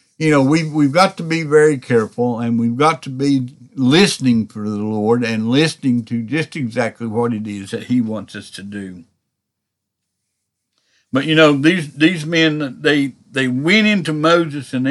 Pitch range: 115-155 Hz